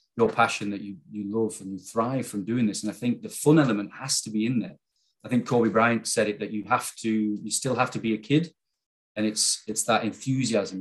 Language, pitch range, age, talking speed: English, 105-125 Hz, 30-49, 250 wpm